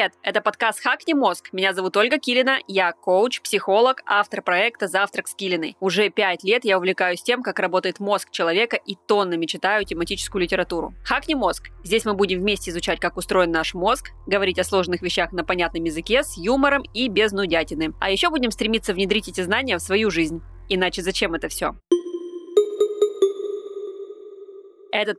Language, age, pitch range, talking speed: Russian, 20-39, 180-225 Hz, 165 wpm